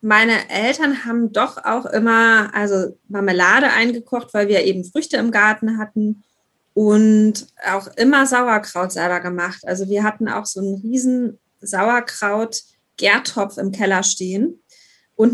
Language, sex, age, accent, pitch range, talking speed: German, female, 20-39, German, 190-225 Hz, 135 wpm